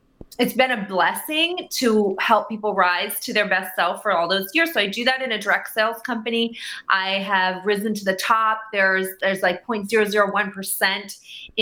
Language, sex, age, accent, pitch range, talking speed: English, female, 30-49, American, 195-235 Hz, 180 wpm